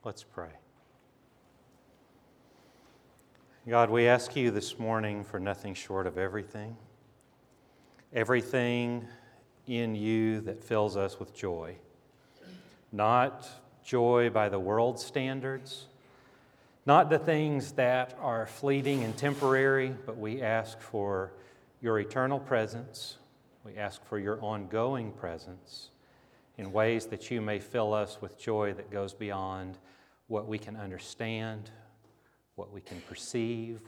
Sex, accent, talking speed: male, American, 120 wpm